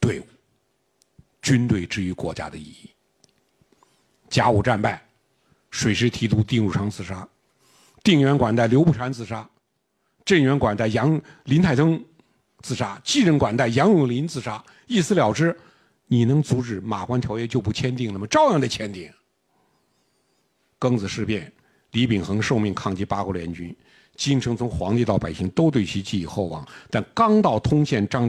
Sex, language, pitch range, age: male, Chinese, 105-145 Hz, 50-69